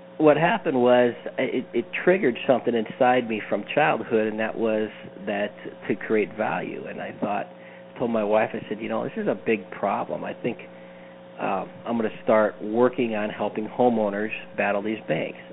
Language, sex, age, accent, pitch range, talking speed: English, male, 40-59, American, 105-125 Hz, 180 wpm